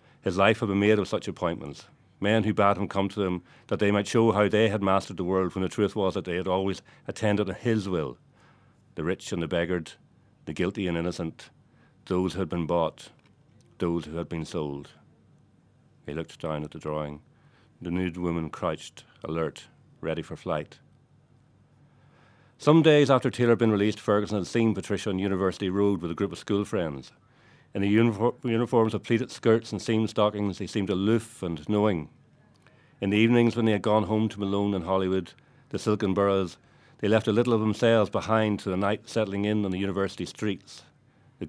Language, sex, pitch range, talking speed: English, male, 95-115 Hz, 195 wpm